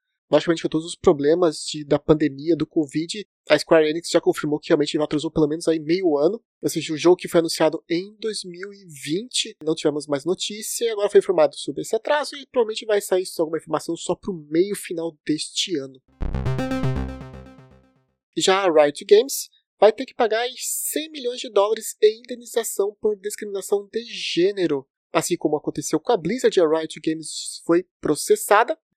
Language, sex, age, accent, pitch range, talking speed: Portuguese, male, 30-49, Brazilian, 150-205 Hz, 170 wpm